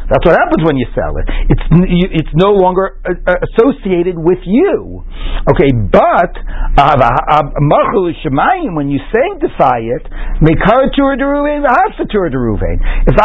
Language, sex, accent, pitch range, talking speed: English, male, American, 155-220 Hz, 100 wpm